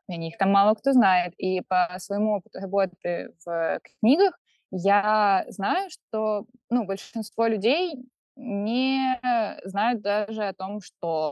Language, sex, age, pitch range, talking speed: Russian, female, 20-39, 185-235 Hz, 135 wpm